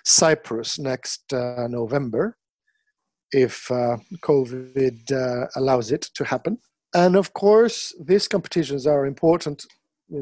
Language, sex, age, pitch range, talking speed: English, male, 50-69, 135-160 Hz, 115 wpm